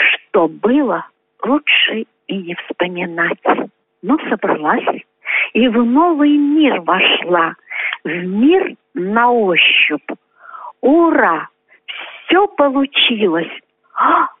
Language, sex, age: Russian, female, 50-69